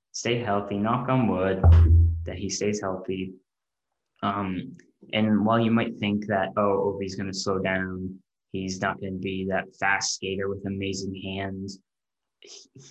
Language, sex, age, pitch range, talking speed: English, male, 10-29, 95-110 Hz, 160 wpm